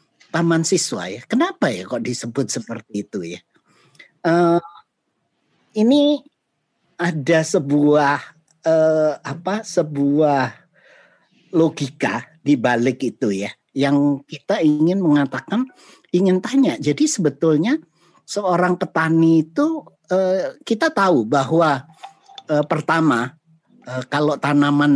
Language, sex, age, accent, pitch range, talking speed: Indonesian, male, 50-69, native, 140-185 Hz, 100 wpm